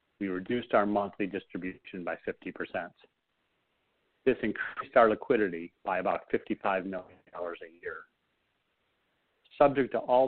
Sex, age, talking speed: male, 40-59, 115 wpm